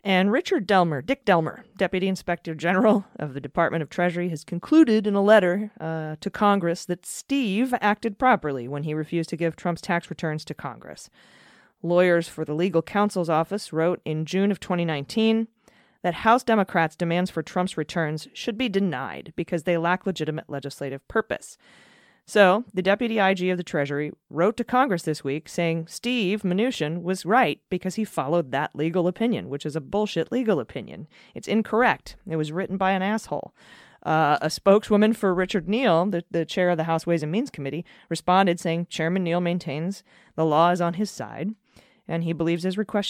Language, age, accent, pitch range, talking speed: English, 30-49, American, 165-210 Hz, 180 wpm